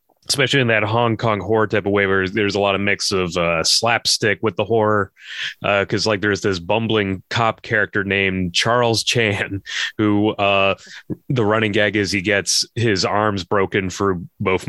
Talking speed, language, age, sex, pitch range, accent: 185 wpm, English, 30-49, male, 95-110 Hz, American